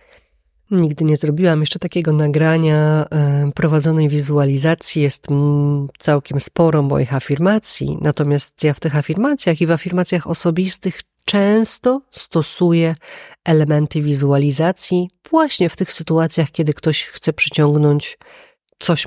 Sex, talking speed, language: female, 110 wpm, Polish